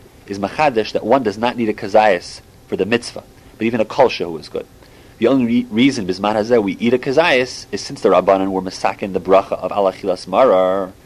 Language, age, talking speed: English, 30-49, 205 wpm